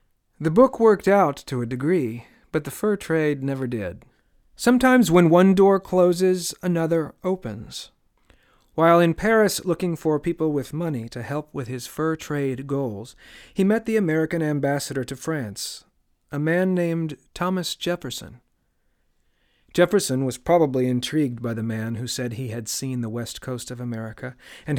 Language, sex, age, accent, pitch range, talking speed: English, male, 40-59, American, 125-165 Hz, 155 wpm